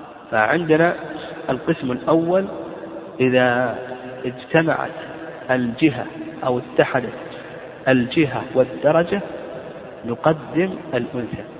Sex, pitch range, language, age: male, 135-160 Hz, Arabic, 50-69